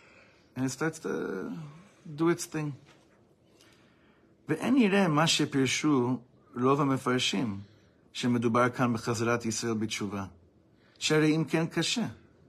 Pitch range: 105-145 Hz